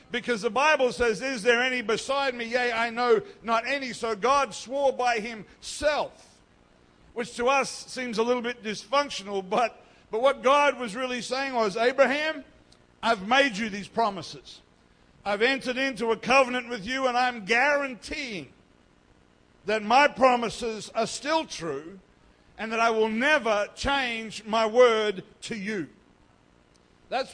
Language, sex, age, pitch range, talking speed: English, male, 60-79, 195-255 Hz, 150 wpm